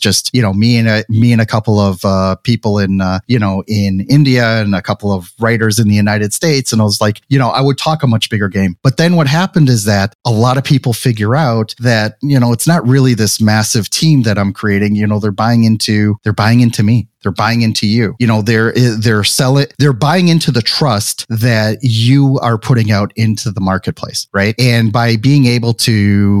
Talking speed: 235 wpm